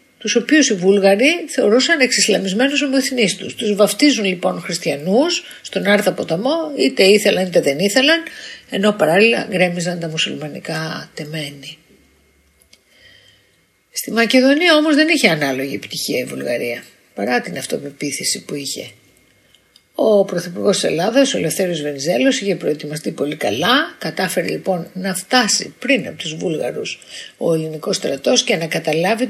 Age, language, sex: 50-69, Greek, female